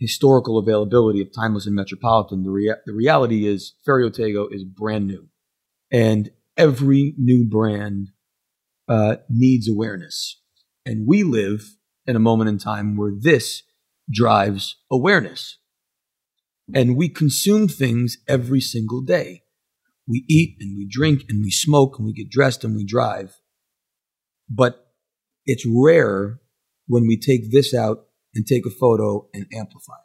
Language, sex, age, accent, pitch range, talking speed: English, male, 40-59, American, 105-125 Hz, 140 wpm